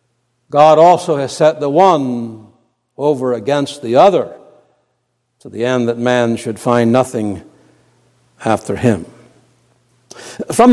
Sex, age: male, 60-79